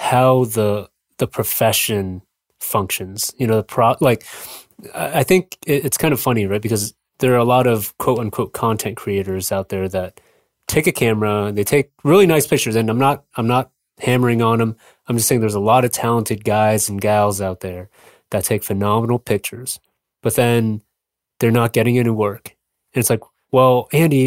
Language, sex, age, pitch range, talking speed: English, male, 20-39, 110-130 Hz, 190 wpm